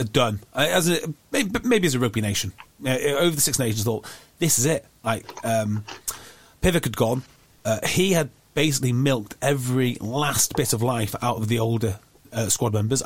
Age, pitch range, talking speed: 30-49, 115-150 Hz, 185 wpm